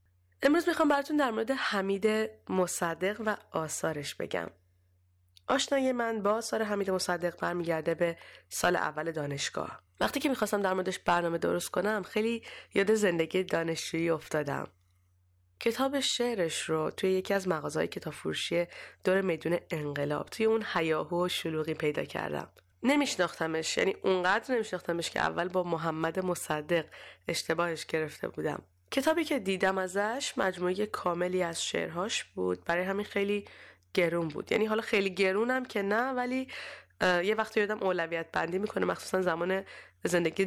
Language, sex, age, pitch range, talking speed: Persian, female, 30-49, 160-210 Hz, 140 wpm